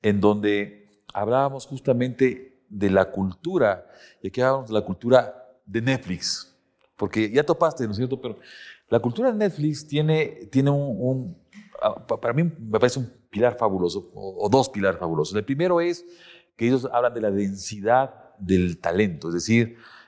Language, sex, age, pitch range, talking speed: Spanish, male, 40-59, 105-155 Hz, 165 wpm